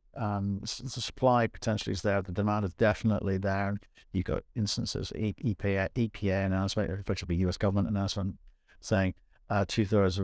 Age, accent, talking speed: 50-69, British, 170 wpm